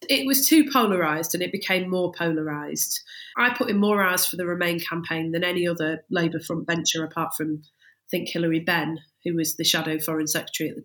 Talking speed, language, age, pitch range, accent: 210 wpm, English, 40-59, 165-195 Hz, British